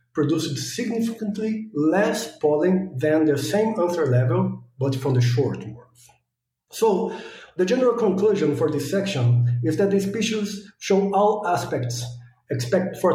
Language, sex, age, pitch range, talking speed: English, male, 50-69, 125-185 Hz, 130 wpm